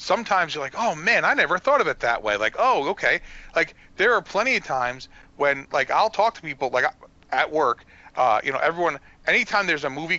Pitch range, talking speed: 145-195 Hz, 225 wpm